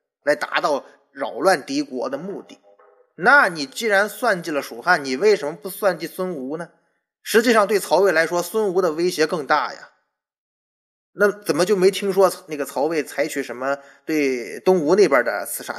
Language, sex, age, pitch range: Chinese, male, 20-39, 155-250 Hz